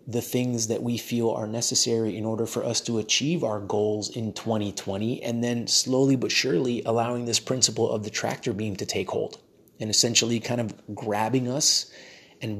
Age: 30-49